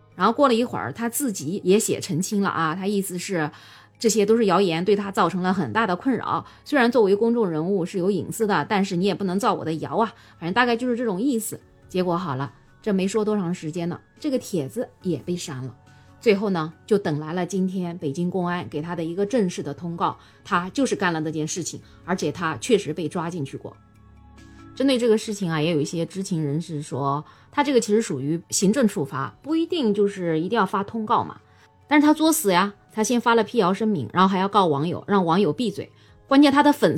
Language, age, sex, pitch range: Chinese, 20-39, female, 160-225 Hz